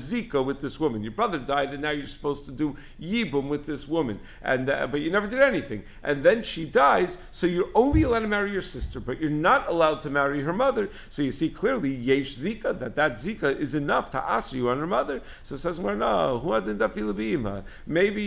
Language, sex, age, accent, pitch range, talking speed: English, male, 50-69, American, 130-165 Hz, 215 wpm